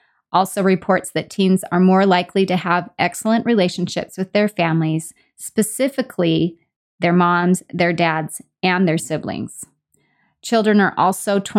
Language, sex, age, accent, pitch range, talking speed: English, female, 20-39, American, 170-200 Hz, 130 wpm